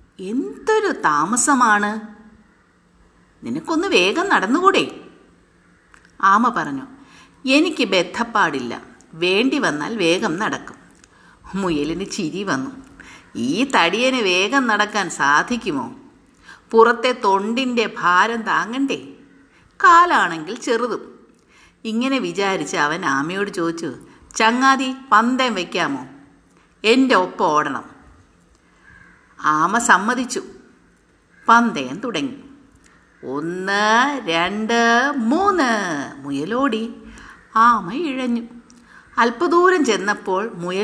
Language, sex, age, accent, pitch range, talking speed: Malayalam, female, 50-69, native, 195-265 Hz, 75 wpm